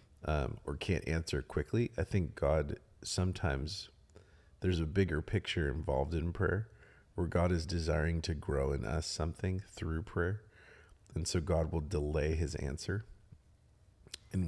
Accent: American